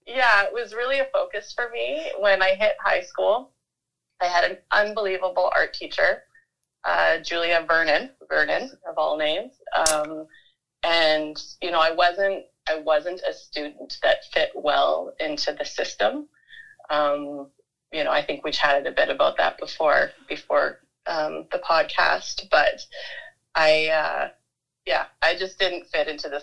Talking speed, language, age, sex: 155 wpm, English, 30-49, female